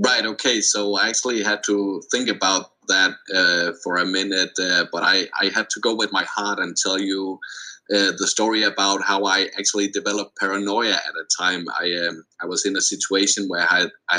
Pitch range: 95-105 Hz